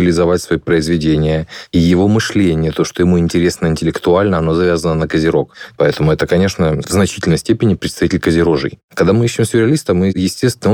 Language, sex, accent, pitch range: Russian, male, native, 85-100 Hz